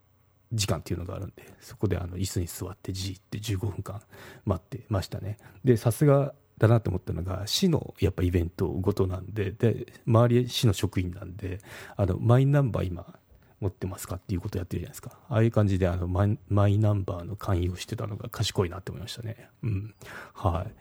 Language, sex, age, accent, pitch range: Japanese, male, 40-59, native, 95-115 Hz